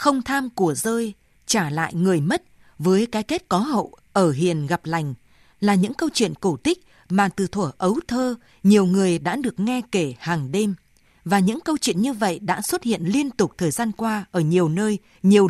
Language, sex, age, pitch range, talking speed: Vietnamese, female, 20-39, 170-225 Hz, 210 wpm